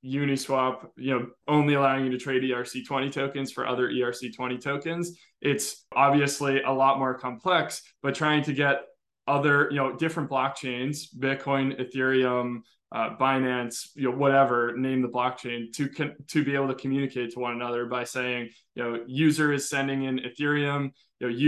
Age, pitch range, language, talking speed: 20-39, 125-140 Hz, English, 170 wpm